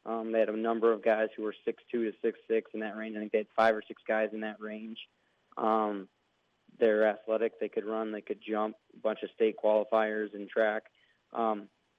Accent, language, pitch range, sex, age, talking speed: American, English, 105-115 Hz, male, 20-39, 225 wpm